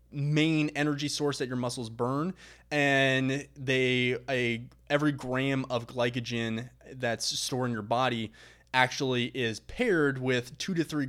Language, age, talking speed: English, 20-39, 140 wpm